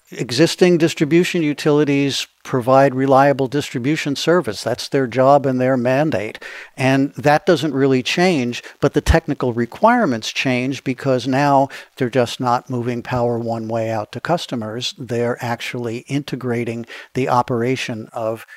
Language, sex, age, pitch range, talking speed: English, male, 50-69, 120-145 Hz, 135 wpm